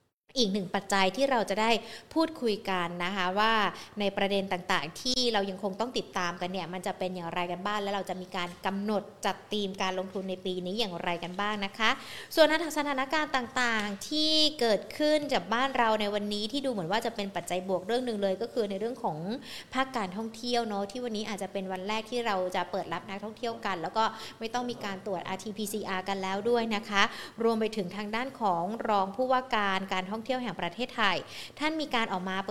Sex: female